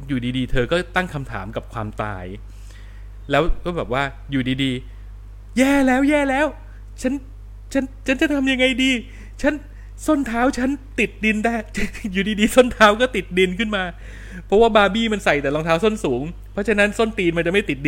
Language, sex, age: Thai, male, 20-39